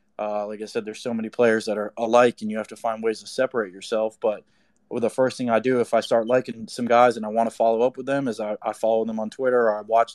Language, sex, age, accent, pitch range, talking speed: English, male, 20-39, American, 110-130 Hz, 300 wpm